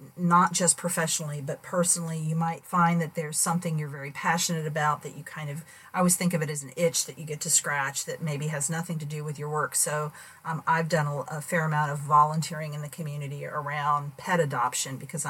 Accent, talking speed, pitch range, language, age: American, 230 wpm, 150-175 Hz, English, 40-59